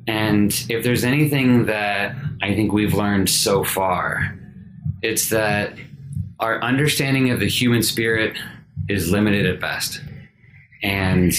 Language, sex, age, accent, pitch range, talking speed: English, male, 30-49, American, 100-135 Hz, 125 wpm